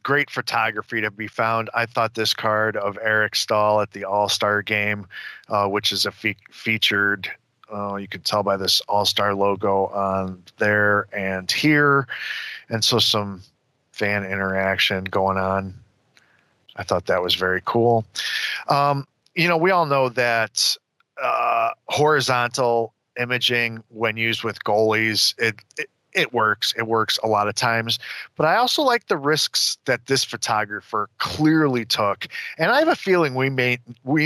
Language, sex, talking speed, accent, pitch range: English, male, 160 wpm, American, 100-135 Hz